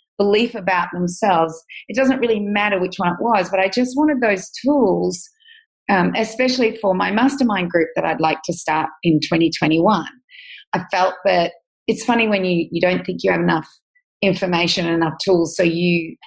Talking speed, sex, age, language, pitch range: 180 wpm, female, 30-49, English, 175-245 Hz